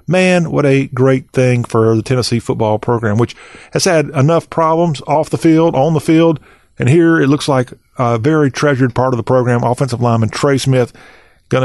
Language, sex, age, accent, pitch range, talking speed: English, male, 40-59, American, 120-150 Hz, 195 wpm